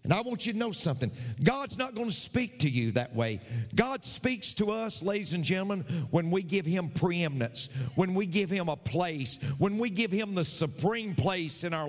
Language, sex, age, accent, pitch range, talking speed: English, male, 50-69, American, 120-195 Hz, 215 wpm